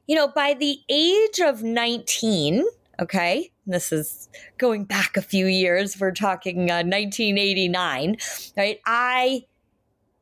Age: 20-39